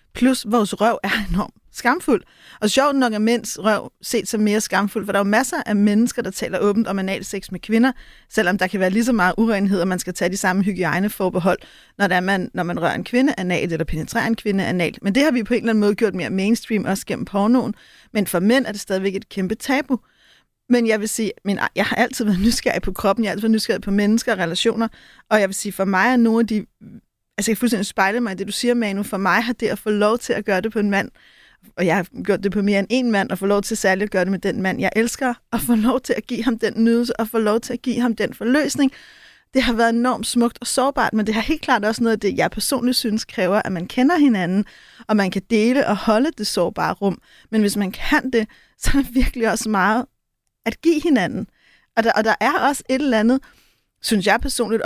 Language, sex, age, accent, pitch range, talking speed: Danish, female, 30-49, native, 200-240 Hz, 255 wpm